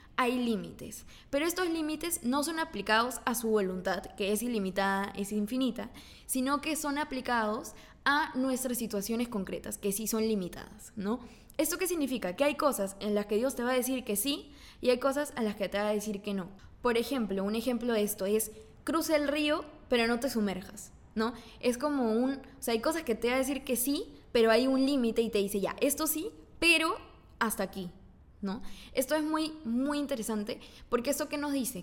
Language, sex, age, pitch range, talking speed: Spanish, female, 10-29, 210-270 Hz, 205 wpm